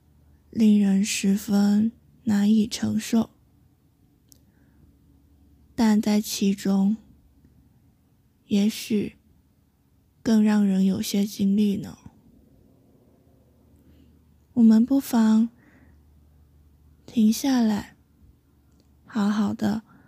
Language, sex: Chinese, female